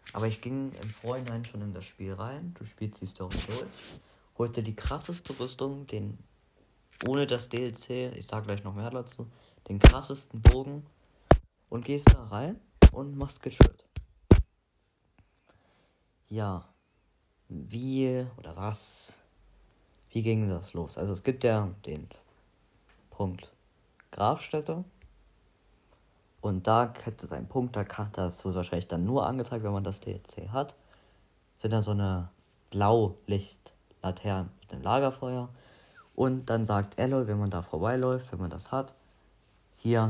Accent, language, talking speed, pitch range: German, German, 140 wpm, 95-120 Hz